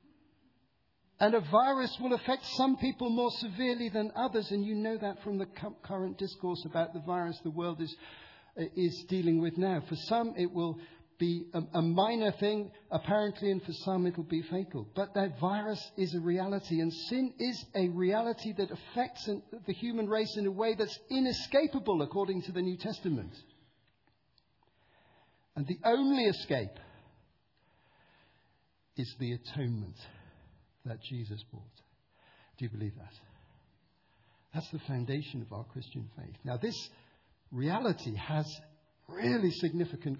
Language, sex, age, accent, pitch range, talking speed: English, male, 50-69, British, 120-200 Hz, 150 wpm